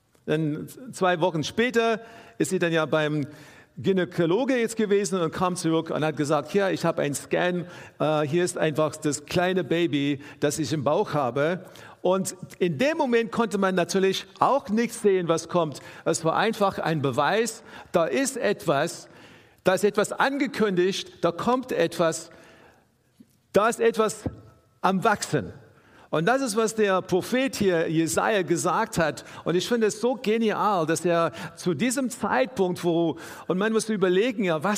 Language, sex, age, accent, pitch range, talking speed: German, male, 50-69, German, 165-220 Hz, 160 wpm